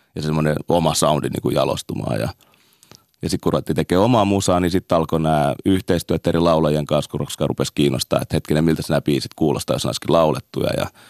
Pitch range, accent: 75-100 Hz, native